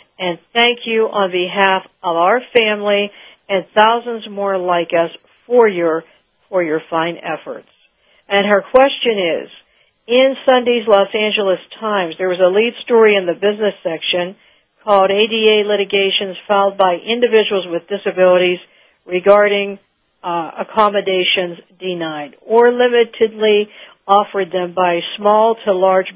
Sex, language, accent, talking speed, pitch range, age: female, English, American, 130 wpm, 185-225 Hz, 60-79